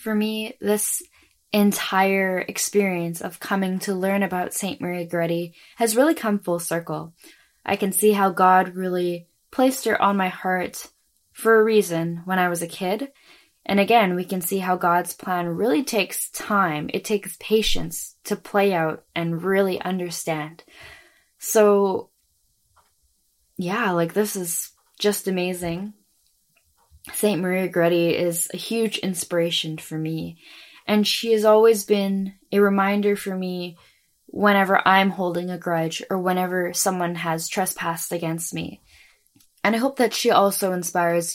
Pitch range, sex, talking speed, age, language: 175-205 Hz, female, 145 wpm, 10-29, English